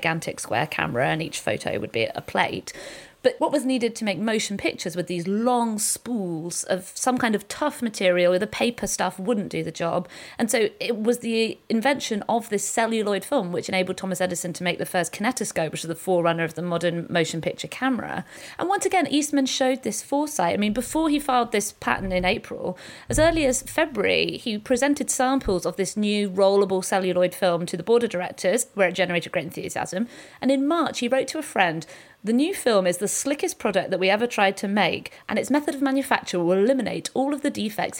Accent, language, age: British, English, 40-59